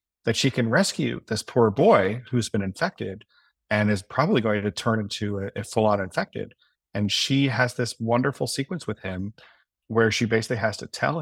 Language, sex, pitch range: English, male, 105-130 Hz